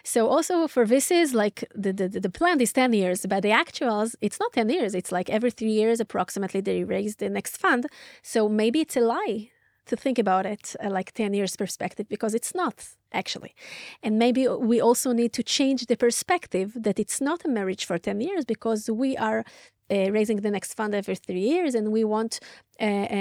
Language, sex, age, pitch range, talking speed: Hebrew, female, 30-49, 205-245 Hz, 205 wpm